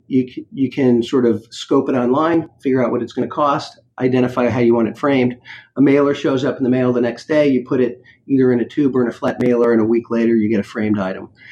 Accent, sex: American, male